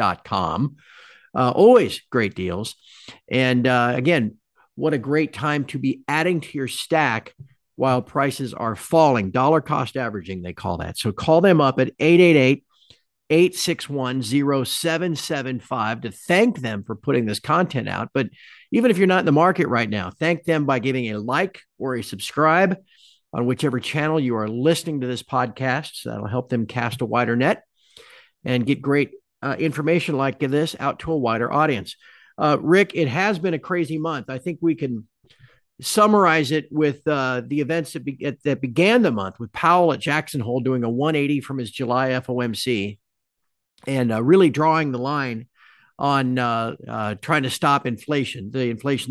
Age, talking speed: 50-69, 170 wpm